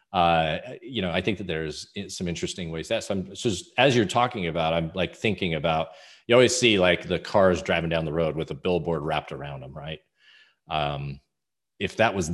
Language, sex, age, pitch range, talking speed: English, male, 40-59, 80-95 Hz, 205 wpm